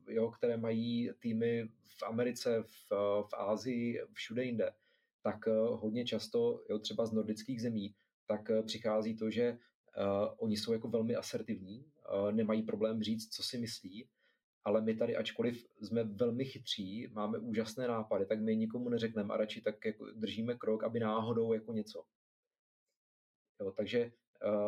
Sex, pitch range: male, 105-120 Hz